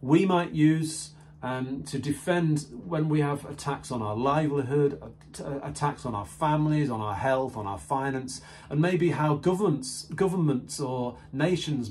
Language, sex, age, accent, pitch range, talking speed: English, male, 40-59, British, 125-155 Hz, 150 wpm